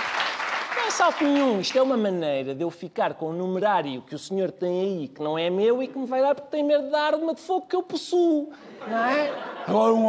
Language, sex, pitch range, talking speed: Portuguese, male, 190-275 Hz, 245 wpm